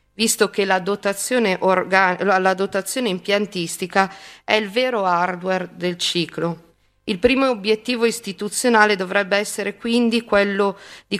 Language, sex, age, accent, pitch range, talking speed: Italian, female, 40-59, native, 185-220 Hz, 115 wpm